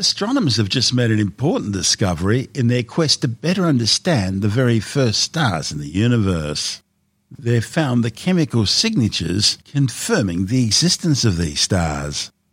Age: 50-69